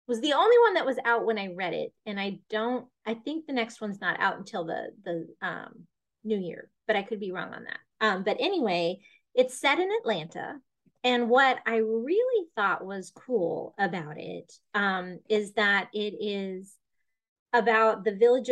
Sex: female